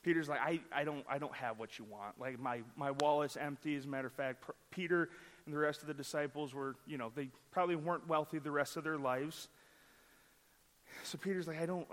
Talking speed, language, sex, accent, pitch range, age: 230 wpm, English, male, American, 135-165 Hz, 30-49